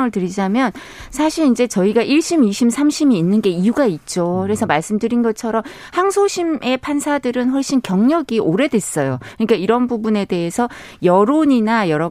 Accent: native